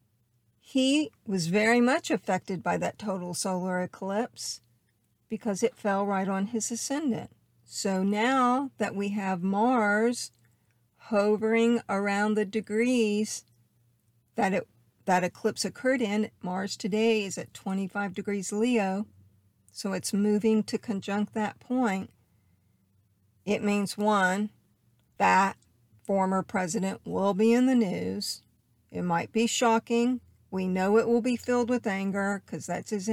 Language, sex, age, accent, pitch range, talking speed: English, female, 50-69, American, 155-220 Hz, 130 wpm